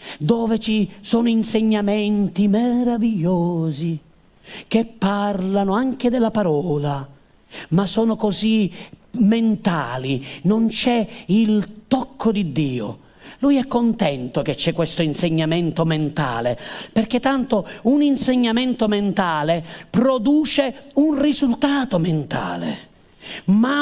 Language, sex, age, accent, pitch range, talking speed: Italian, male, 40-59, native, 205-275 Hz, 95 wpm